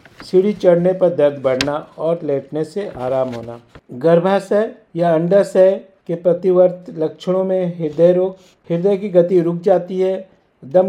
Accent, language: native, Hindi